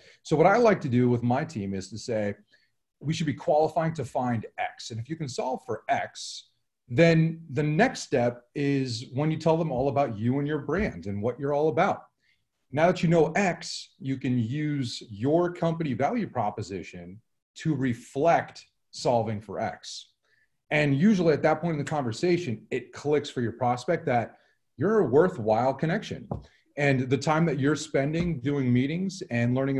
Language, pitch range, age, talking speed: English, 120-155 Hz, 30-49, 185 wpm